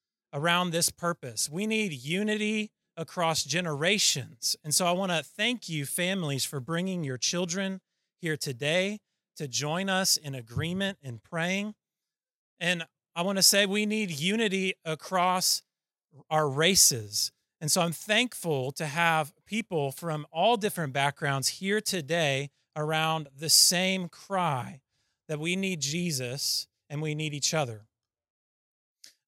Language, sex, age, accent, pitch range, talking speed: English, male, 30-49, American, 150-195 Hz, 135 wpm